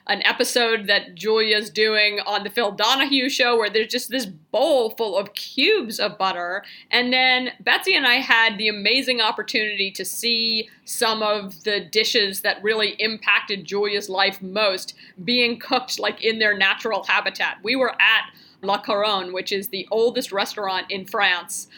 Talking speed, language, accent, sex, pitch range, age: 165 wpm, English, American, female, 205-265 Hz, 40-59